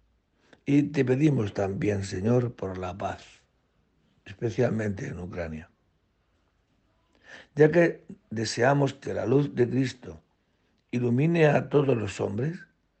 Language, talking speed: Spanish, 110 wpm